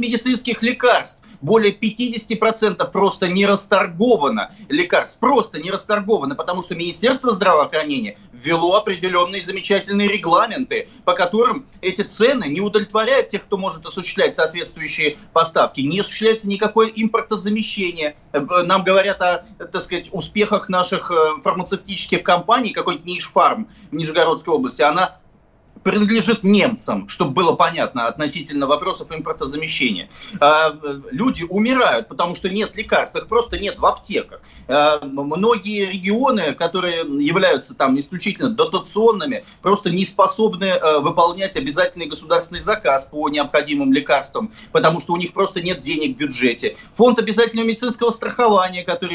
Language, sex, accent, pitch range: Russian, male, native, 170-220 Hz